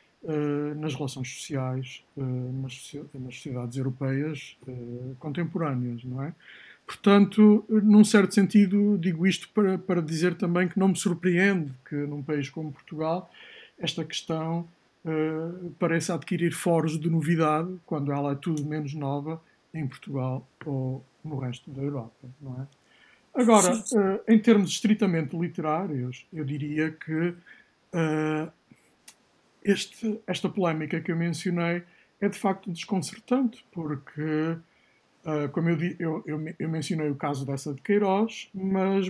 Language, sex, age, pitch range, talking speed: Portuguese, male, 60-79, 145-180 Hz, 120 wpm